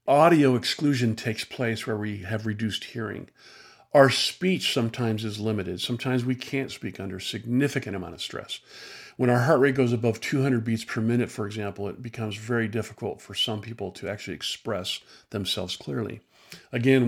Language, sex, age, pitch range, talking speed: English, male, 50-69, 105-125 Hz, 170 wpm